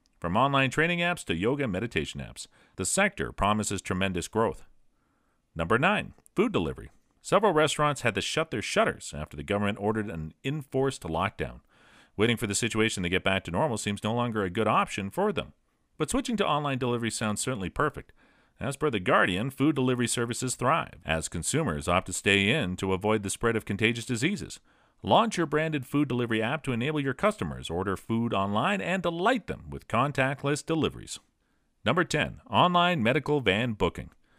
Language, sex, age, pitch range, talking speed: English, male, 40-59, 100-155 Hz, 180 wpm